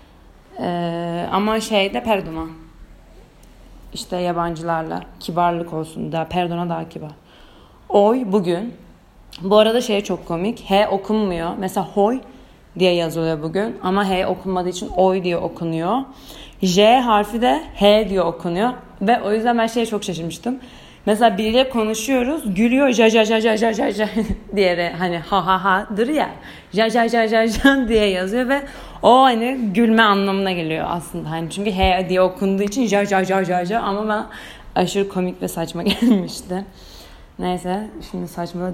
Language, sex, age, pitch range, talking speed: Turkish, female, 30-49, 175-220 Hz, 135 wpm